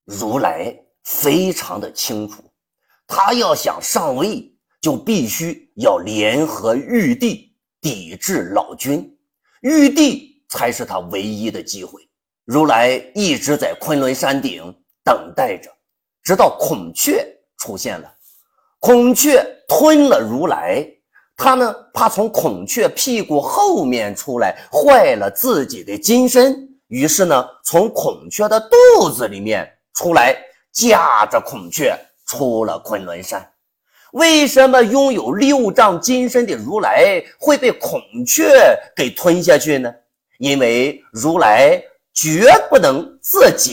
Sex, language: male, Chinese